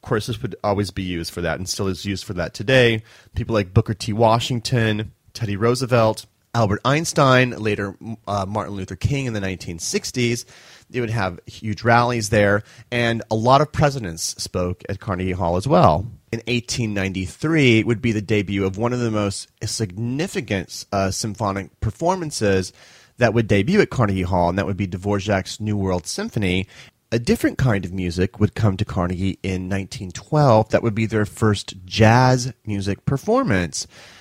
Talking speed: 175 wpm